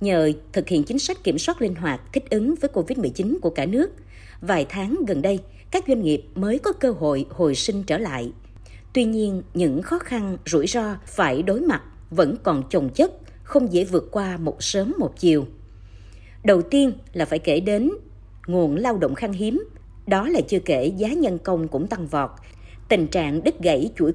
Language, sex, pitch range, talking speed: Vietnamese, female, 145-240 Hz, 195 wpm